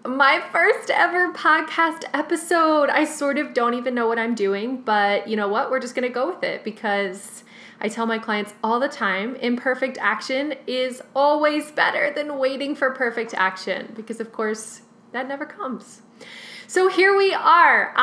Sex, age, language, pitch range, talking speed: female, 20-39, English, 220-275 Hz, 175 wpm